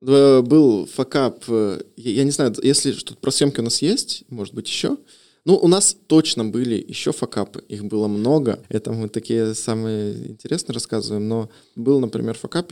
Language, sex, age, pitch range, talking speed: Russian, male, 20-39, 105-120 Hz, 165 wpm